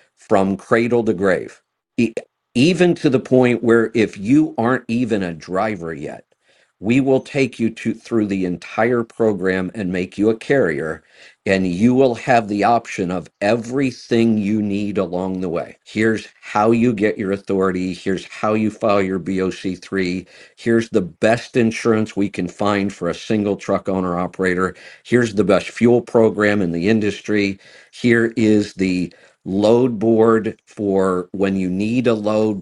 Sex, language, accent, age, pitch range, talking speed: male, English, American, 50-69, 95-115 Hz, 160 wpm